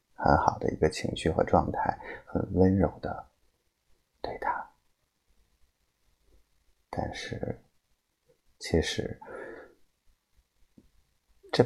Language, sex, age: Chinese, male, 50-69